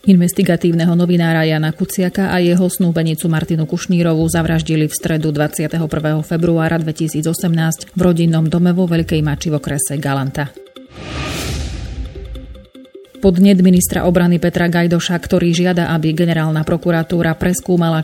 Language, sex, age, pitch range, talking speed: Slovak, female, 30-49, 155-180 Hz, 115 wpm